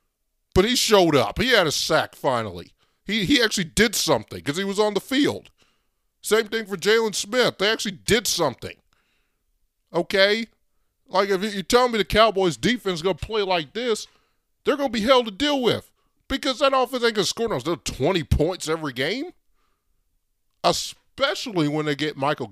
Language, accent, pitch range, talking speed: English, American, 175-225 Hz, 175 wpm